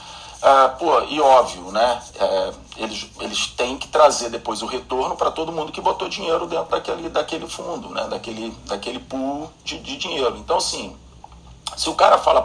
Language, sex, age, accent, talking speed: Portuguese, male, 40-59, Brazilian, 180 wpm